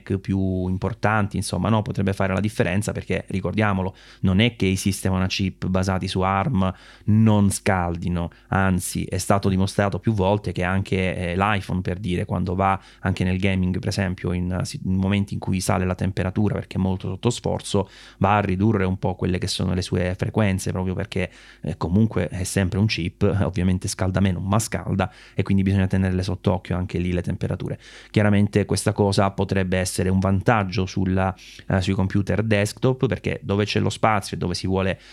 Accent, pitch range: native, 95-105 Hz